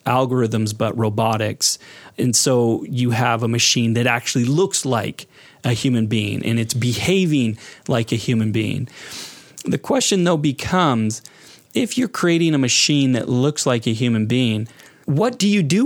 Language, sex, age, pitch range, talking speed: English, male, 30-49, 120-160 Hz, 160 wpm